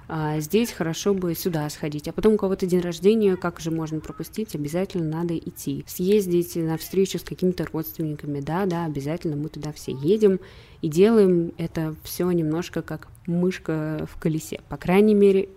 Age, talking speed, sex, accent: 20-39, 165 wpm, female, native